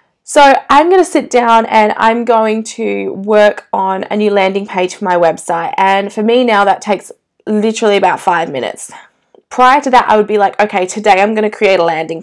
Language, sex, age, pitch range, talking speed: English, female, 20-39, 190-240 Hz, 215 wpm